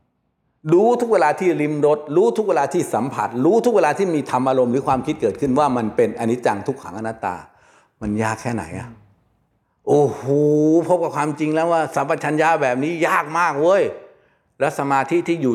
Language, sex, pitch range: Thai, male, 130-185 Hz